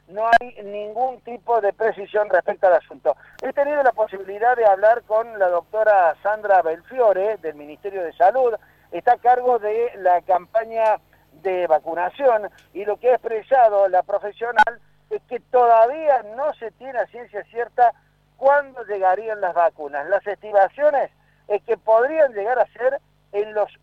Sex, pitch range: male, 185-240 Hz